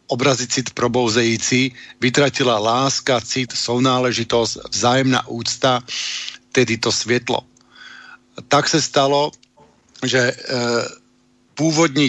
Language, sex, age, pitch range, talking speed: Slovak, male, 50-69, 125-140 Hz, 80 wpm